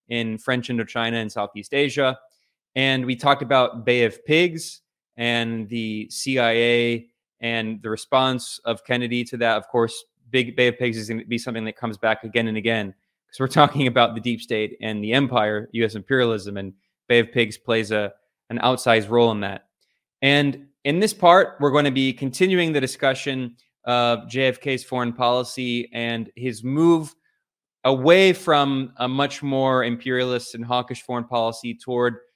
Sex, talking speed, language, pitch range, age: male, 170 wpm, English, 115-135 Hz, 20-39